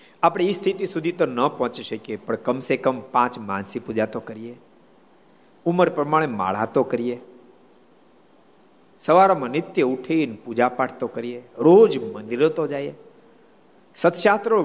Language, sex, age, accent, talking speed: Gujarati, male, 50-69, native, 135 wpm